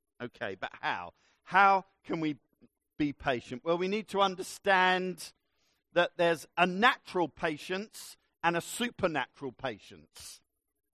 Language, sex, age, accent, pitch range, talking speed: English, male, 50-69, British, 155-200 Hz, 120 wpm